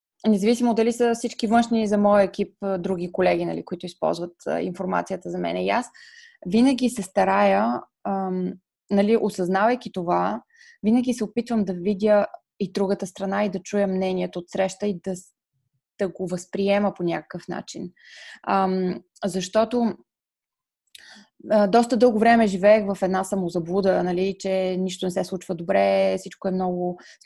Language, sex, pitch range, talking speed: Bulgarian, female, 180-225 Hz, 145 wpm